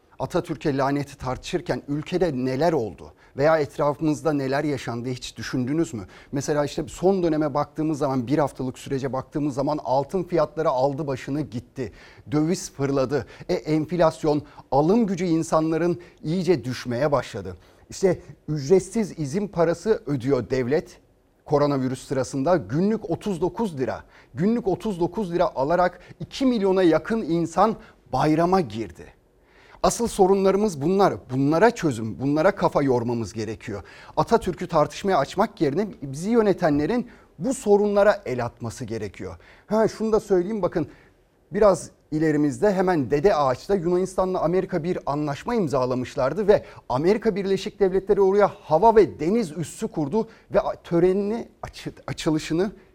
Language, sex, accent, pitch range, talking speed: Turkish, male, native, 130-190 Hz, 120 wpm